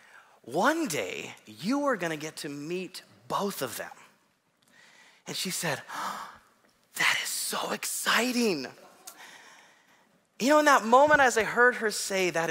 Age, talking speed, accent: 30-49, 145 wpm, American